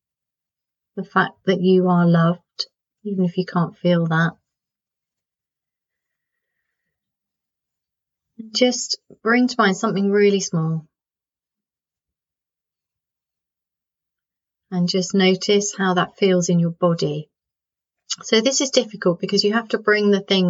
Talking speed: 115 wpm